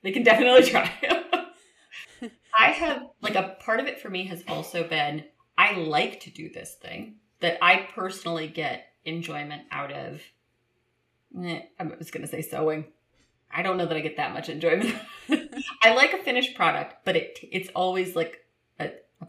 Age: 30-49